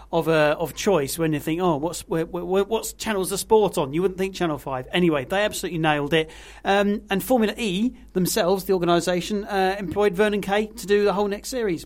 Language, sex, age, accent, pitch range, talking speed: English, male, 40-59, British, 160-200 Hz, 220 wpm